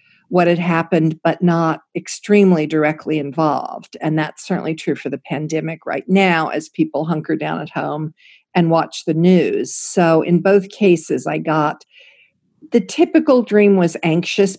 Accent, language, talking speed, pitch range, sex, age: American, English, 155 wpm, 165-225 Hz, female, 50-69